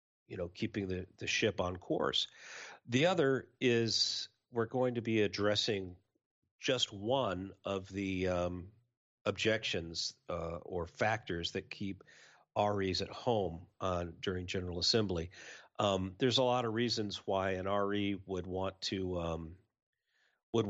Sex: male